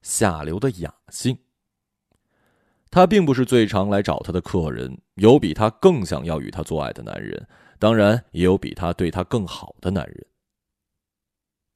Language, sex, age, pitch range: Chinese, male, 20-39, 90-120 Hz